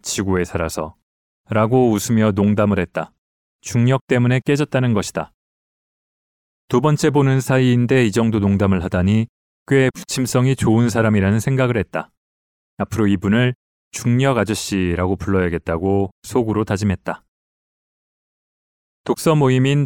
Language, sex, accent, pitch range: Korean, male, native, 100-130 Hz